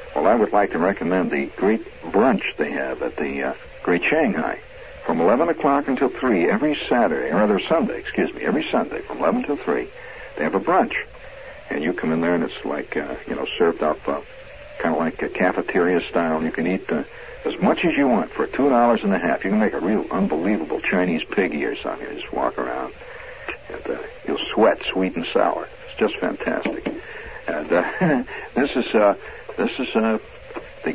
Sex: male